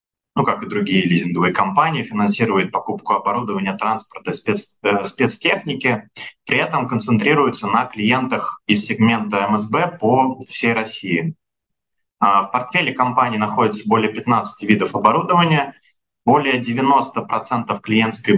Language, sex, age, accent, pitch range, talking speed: Russian, male, 20-39, native, 105-130 Hz, 110 wpm